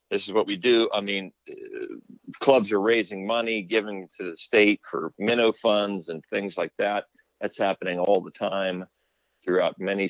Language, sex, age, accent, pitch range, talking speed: English, male, 50-69, American, 95-120 Hz, 170 wpm